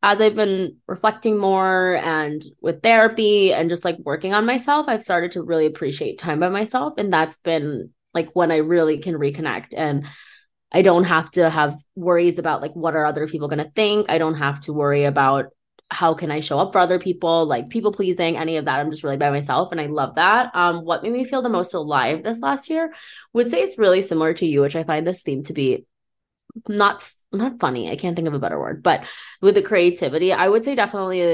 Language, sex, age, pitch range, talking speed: English, female, 20-39, 155-205 Hz, 230 wpm